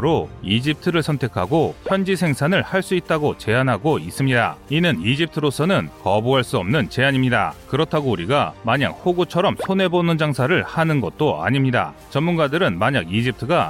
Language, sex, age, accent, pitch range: Korean, male, 30-49, native, 120-165 Hz